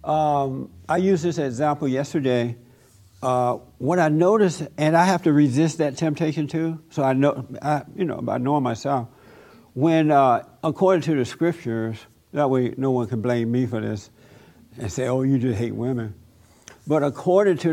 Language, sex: English, male